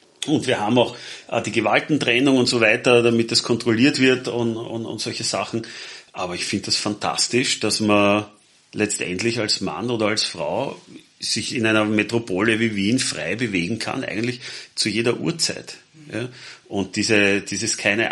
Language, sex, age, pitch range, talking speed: German, male, 30-49, 90-110 Hz, 160 wpm